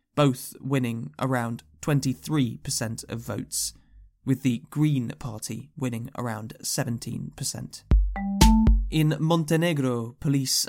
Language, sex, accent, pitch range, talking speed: English, male, British, 125-150 Hz, 90 wpm